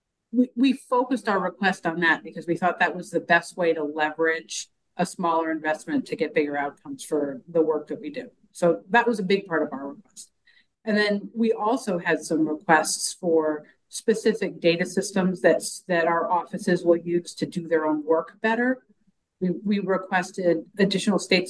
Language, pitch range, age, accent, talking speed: English, 155-195 Hz, 50-69, American, 180 wpm